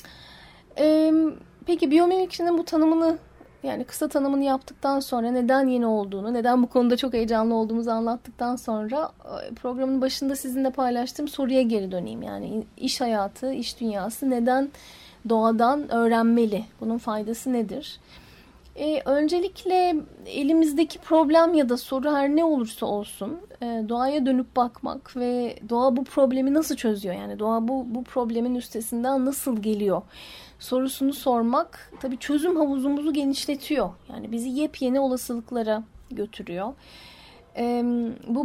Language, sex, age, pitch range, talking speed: Turkish, female, 10-29, 230-275 Hz, 125 wpm